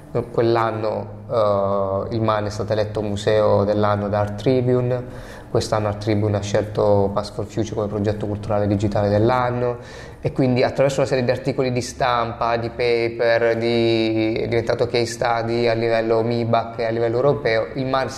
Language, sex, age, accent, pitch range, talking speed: Italian, male, 20-39, native, 110-130 Hz, 160 wpm